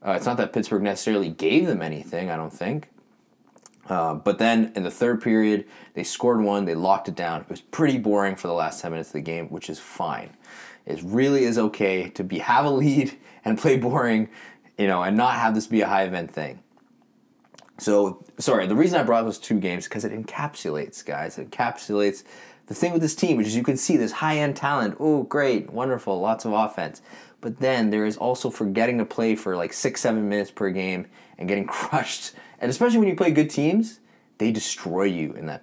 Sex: male